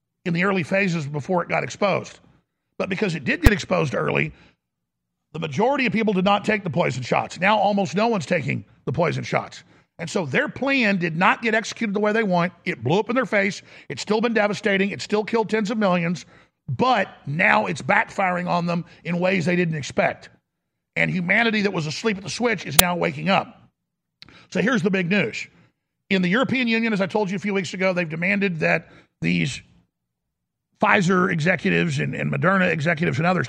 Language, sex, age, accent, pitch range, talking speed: English, male, 50-69, American, 170-215 Hz, 200 wpm